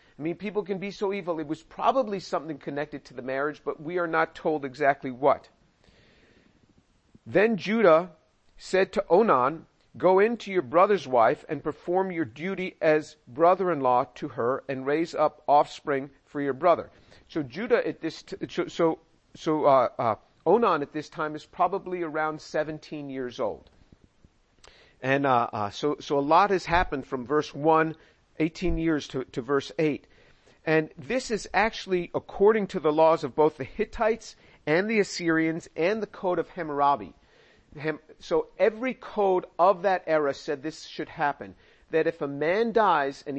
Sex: male